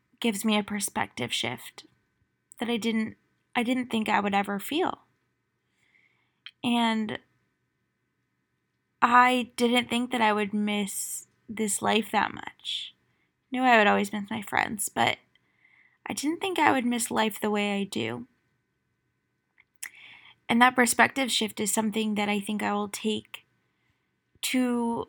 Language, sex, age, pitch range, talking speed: English, female, 20-39, 210-240 Hz, 145 wpm